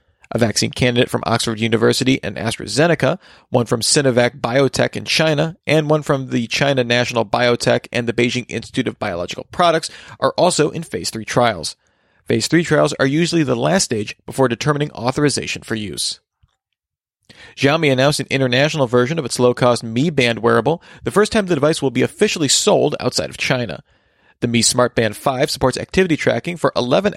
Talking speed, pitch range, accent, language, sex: 175 wpm, 120-150 Hz, American, English, male